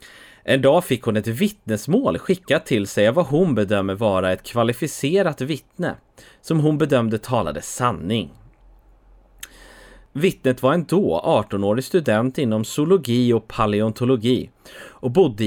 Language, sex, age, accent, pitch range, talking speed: English, male, 30-49, Swedish, 105-145 Hz, 125 wpm